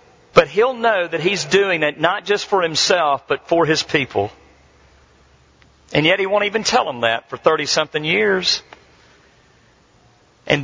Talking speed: 150 wpm